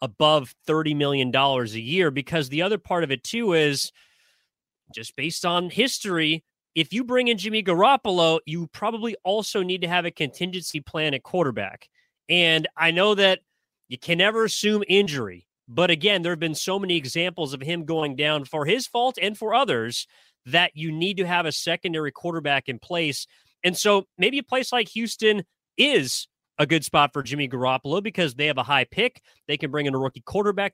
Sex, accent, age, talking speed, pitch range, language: male, American, 30-49, 190 wpm, 145-185 Hz, English